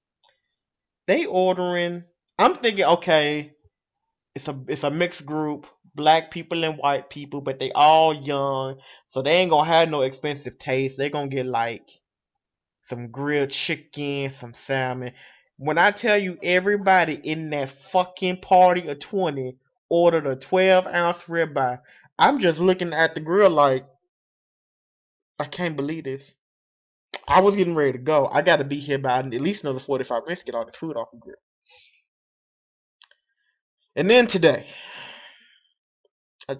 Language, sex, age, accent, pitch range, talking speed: English, male, 20-39, American, 135-175 Hz, 155 wpm